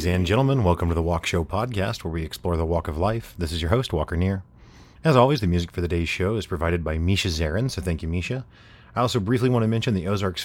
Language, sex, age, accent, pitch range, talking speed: English, male, 30-49, American, 85-110 Hz, 270 wpm